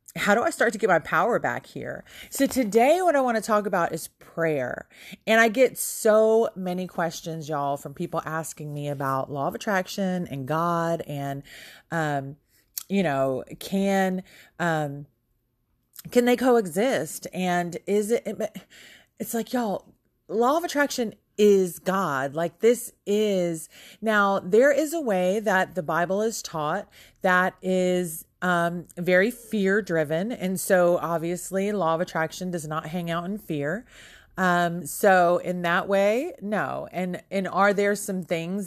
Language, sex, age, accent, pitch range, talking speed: English, female, 30-49, American, 160-205 Hz, 155 wpm